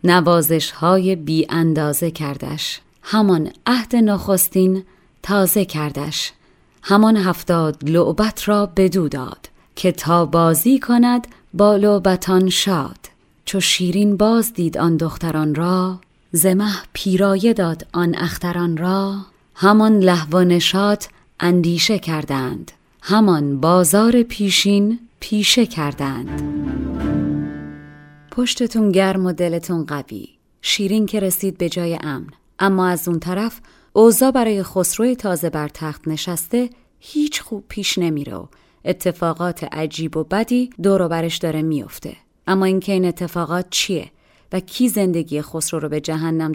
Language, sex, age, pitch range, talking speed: Persian, female, 30-49, 160-200 Hz, 120 wpm